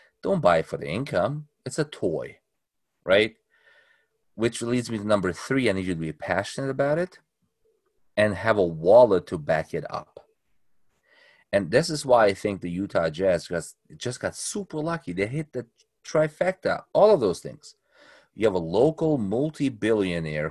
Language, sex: English, male